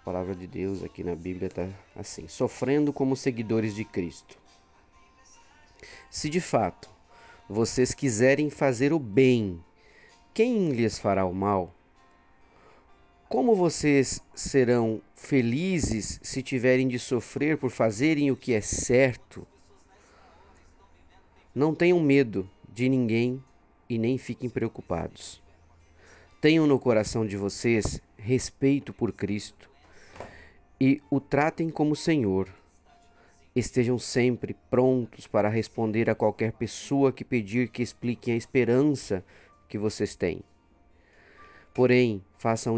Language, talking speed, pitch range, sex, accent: Portuguese, 115 wpm, 100-135 Hz, male, Brazilian